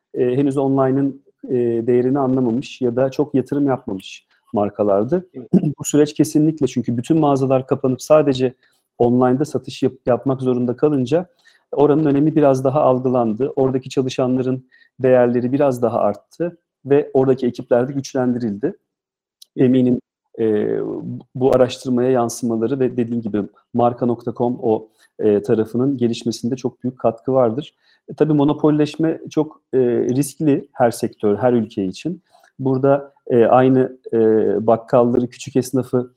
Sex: male